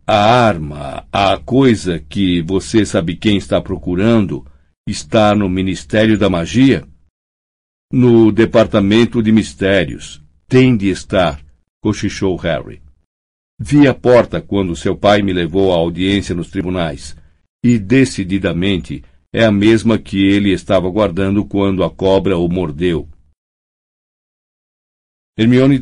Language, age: Portuguese, 60-79